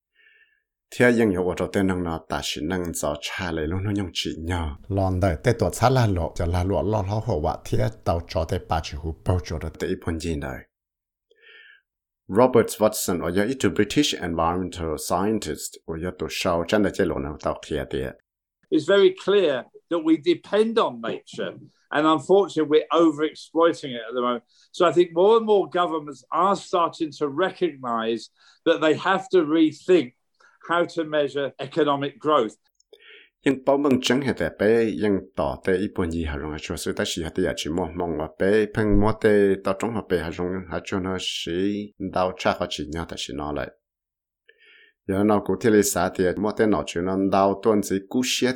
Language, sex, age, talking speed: English, male, 60-79, 110 wpm